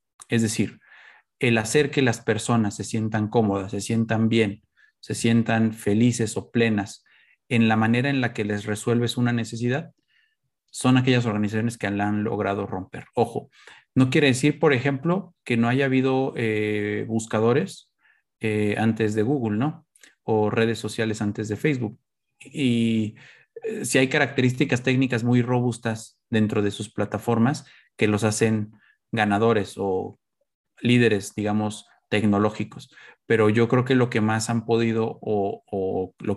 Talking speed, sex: 150 wpm, male